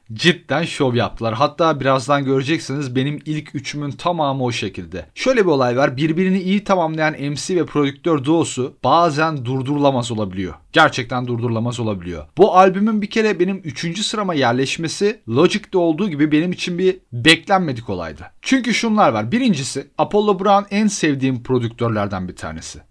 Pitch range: 130-190 Hz